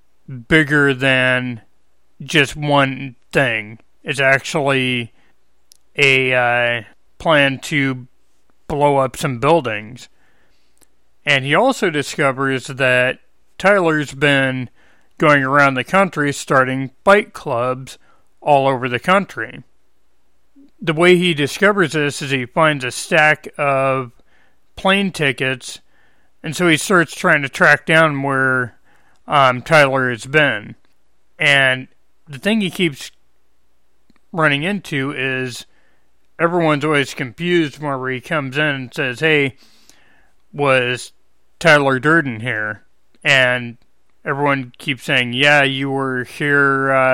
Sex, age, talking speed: male, 40-59, 115 wpm